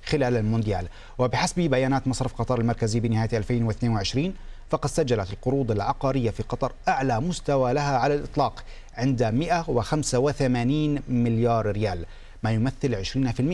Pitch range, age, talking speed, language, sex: 115-145 Hz, 40-59, 115 wpm, Arabic, male